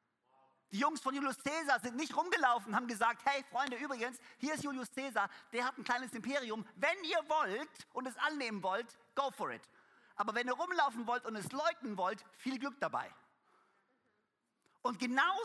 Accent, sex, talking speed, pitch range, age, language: German, male, 180 wpm, 205-275 Hz, 50-69, German